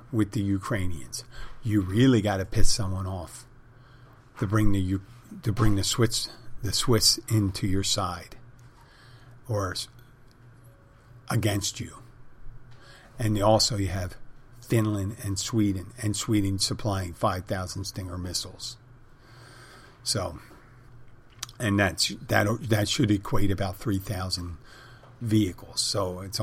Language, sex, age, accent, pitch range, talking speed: English, male, 50-69, American, 100-120 Hz, 120 wpm